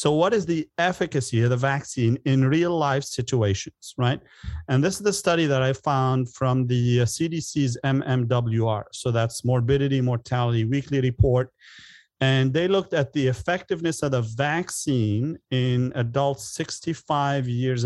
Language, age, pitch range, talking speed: English, 40-59, 120-145 Hz, 150 wpm